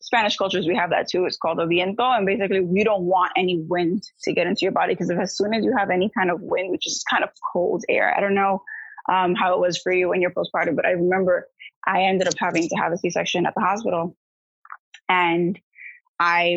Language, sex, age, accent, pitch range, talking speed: English, female, 20-39, American, 180-245 Hz, 240 wpm